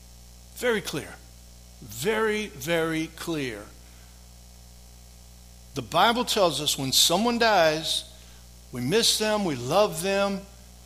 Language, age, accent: English, 60-79, American